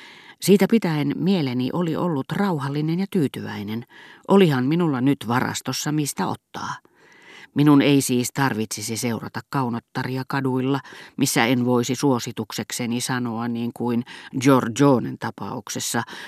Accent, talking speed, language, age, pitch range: native, 115 wpm, Finnish, 40-59, 115-150 Hz